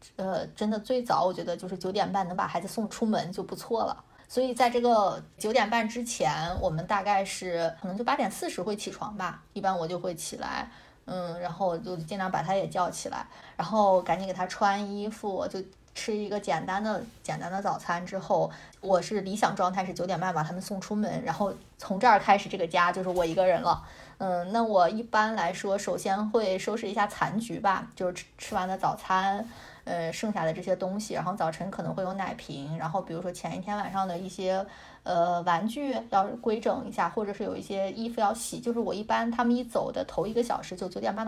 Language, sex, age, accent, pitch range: Chinese, female, 20-39, native, 180-215 Hz